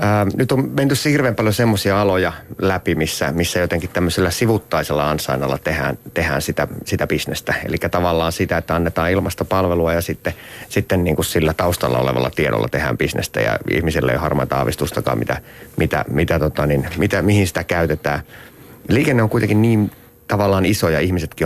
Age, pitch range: 30-49, 75-100 Hz